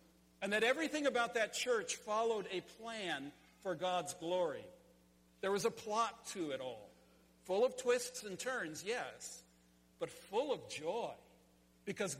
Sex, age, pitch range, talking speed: male, 50-69, 135-225 Hz, 150 wpm